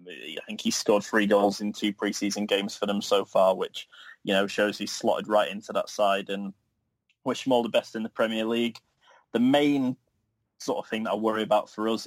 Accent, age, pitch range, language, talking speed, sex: British, 20-39, 100-110 Hz, English, 225 wpm, male